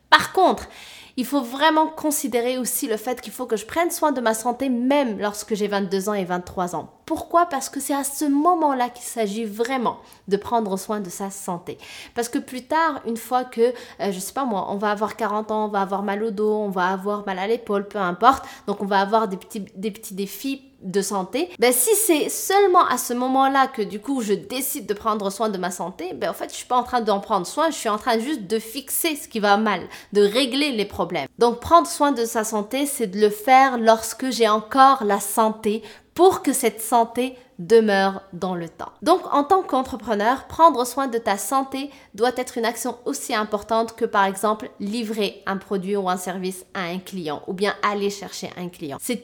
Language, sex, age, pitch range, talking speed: English, female, 20-39, 200-265 Hz, 225 wpm